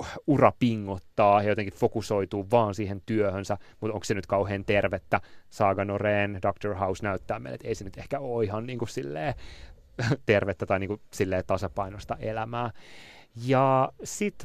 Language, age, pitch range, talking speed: Finnish, 30-49, 100-125 Hz, 145 wpm